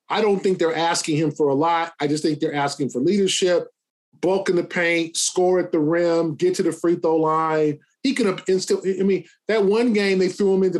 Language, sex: English, male